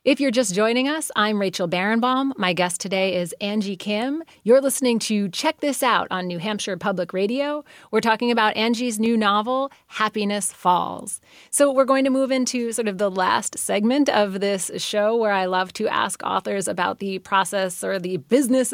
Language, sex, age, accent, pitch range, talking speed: English, female, 30-49, American, 180-225 Hz, 190 wpm